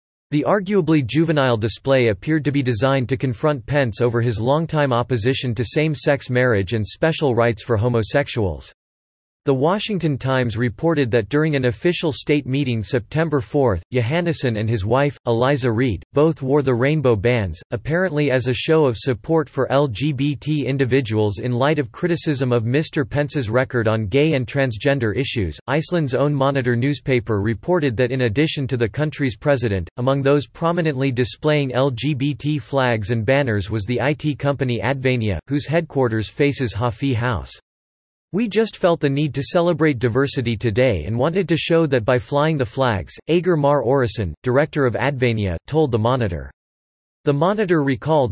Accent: American